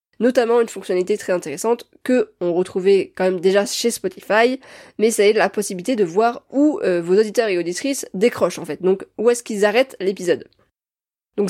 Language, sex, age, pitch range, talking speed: French, female, 20-39, 185-235 Hz, 190 wpm